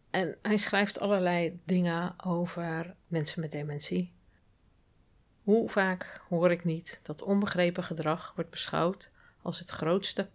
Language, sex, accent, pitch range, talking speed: Dutch, female, Dutch, 165-195 Hz, 130 wpm